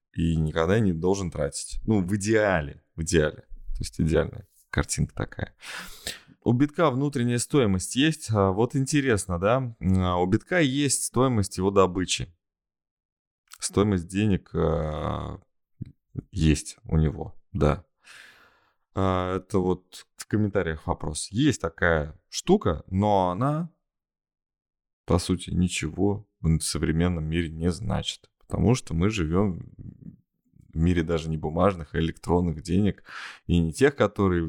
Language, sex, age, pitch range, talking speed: Russian, male, 20-39, 80-105 Hz, 120 wpm